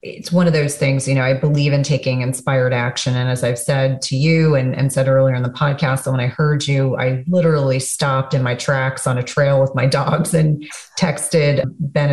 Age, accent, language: 30-49, American, English